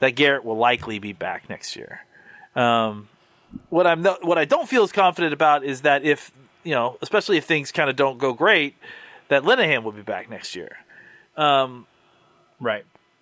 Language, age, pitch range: English, 30-49, 130-170 Hz